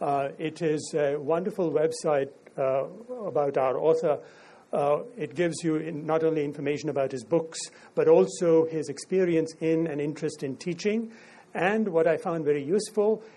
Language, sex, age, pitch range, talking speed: English, male, 60-79, 145-185 Hz, 155 wpm